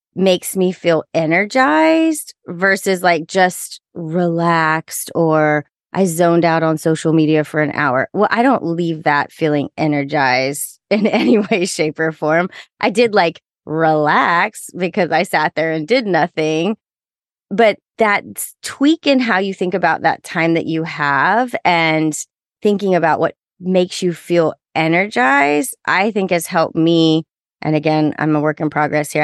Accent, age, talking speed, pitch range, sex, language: American, 30-49, 155 wpm, 160-210 Hz, female, English